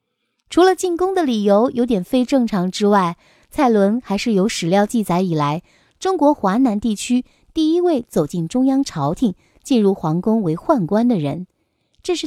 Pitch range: 195-285 Hz